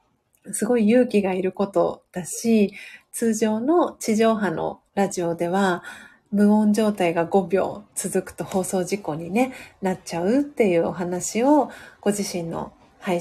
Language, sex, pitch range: Japanese, female, 185-230 Hz